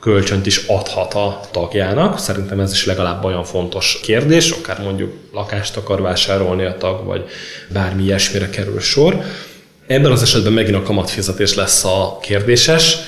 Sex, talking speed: male, 150 wpm